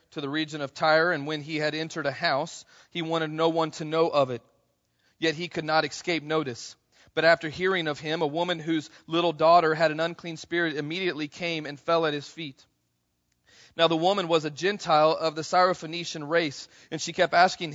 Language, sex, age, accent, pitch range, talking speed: English, male, 40-59, American, 155-175 Hz, 205 wpm